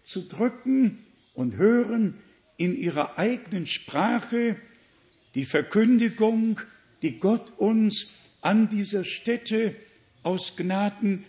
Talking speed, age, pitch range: 95 wpm, 60-79, 175-230 Hz